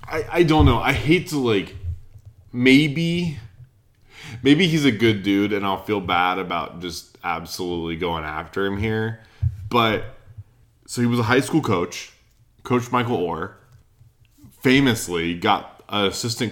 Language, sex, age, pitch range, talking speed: English, male, 20-39, 100-130 Hz, 145 wpm